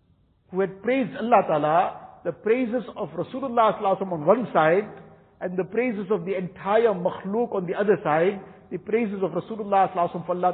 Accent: Indian